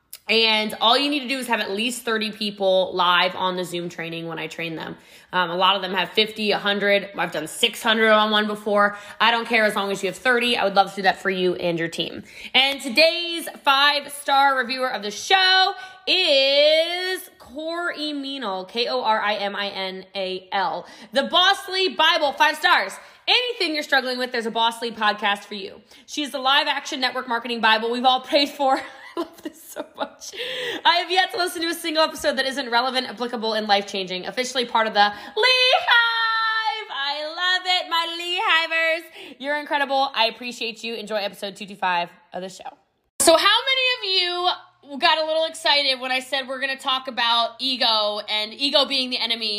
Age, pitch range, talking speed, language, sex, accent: 20-39, 210-315 Hz, 190 wpm, English, female, American